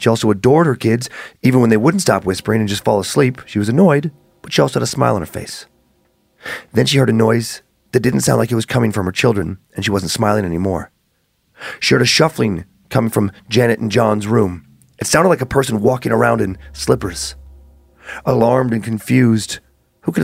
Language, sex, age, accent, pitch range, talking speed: English, male, 30-49, American, 105-125 Hz, 210 wpm